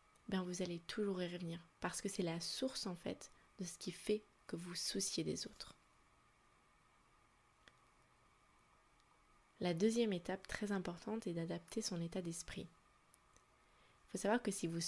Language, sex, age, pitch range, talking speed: French, female, 20-39, 165-205 Hz, 155 wpm